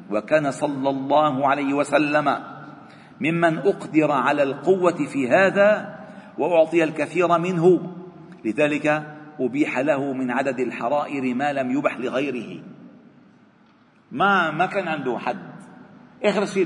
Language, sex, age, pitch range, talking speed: Arabic, male, 50-69, 125-165 Hz, 110 wpm